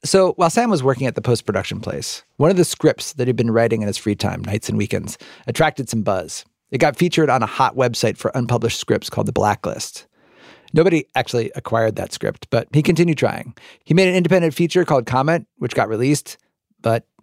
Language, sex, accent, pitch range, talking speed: English, male, American, 105-150 Hz, 210 wpm